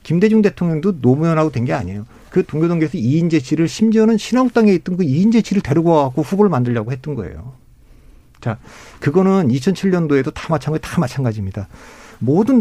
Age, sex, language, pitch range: 50-69, male, Korean, 125-175 Hz